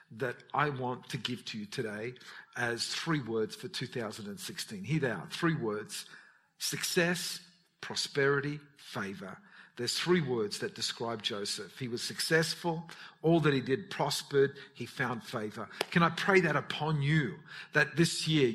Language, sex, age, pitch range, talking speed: English, male, 50-69, 130-180 Hz, 150 wpm